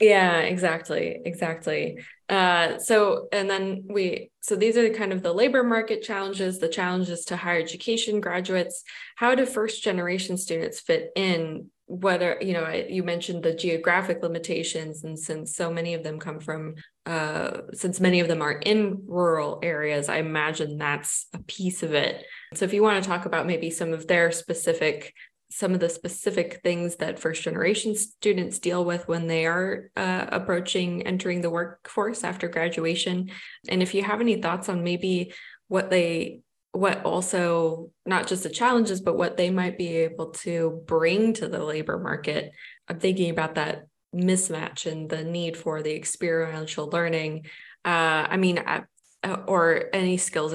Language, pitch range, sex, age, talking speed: English, 165-190 Hz, female, 20-39, 165 wpm